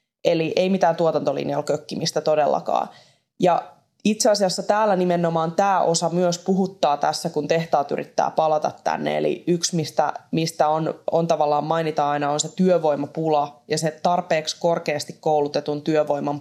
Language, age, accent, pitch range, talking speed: Finnish, 20-39, native, 150-170 Hz, 140 wpm